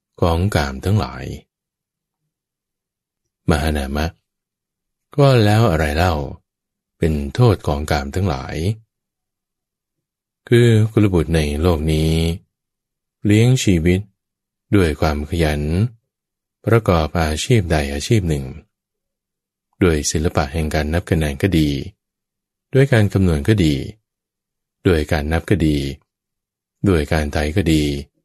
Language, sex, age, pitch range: English, male, 20-39, 75-100 Hz